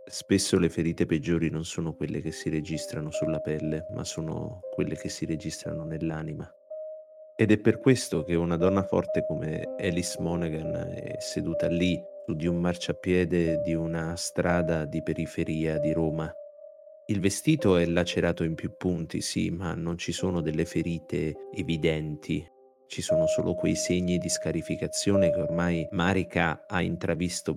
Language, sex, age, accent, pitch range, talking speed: Italian, male, 30-49, native, 85-100 Hz, 155 wpm